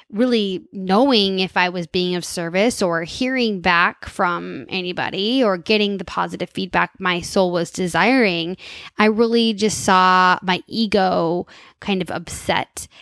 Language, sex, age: English, female, 10-29